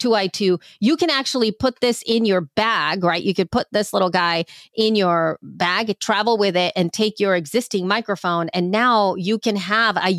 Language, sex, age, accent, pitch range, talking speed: English, female, 30-49, American, 180-240 Hz, 195 wpm